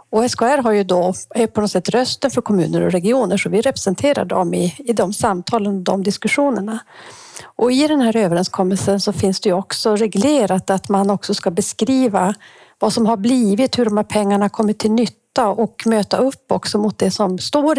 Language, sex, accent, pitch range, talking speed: Swedish, female, native, 195-235 Hz, 200 wpm